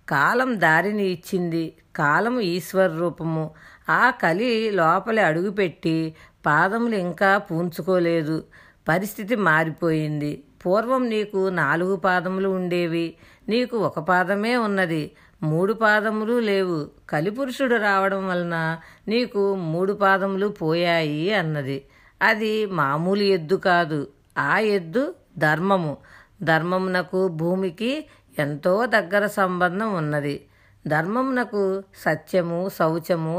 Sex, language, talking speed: female, Telugu, 90 wpm